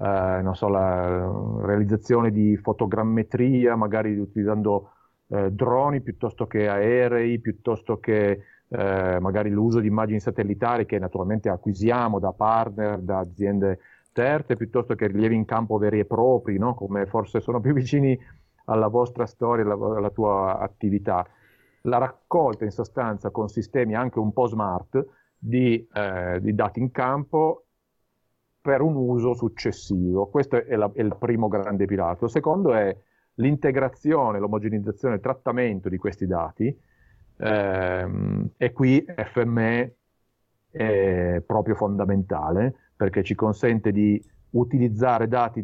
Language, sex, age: Italian, male, 40-59